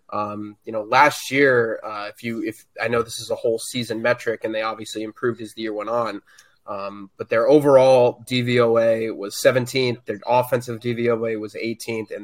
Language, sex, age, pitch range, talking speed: English, male, 20-39, 110-125 Hz, 190 wpm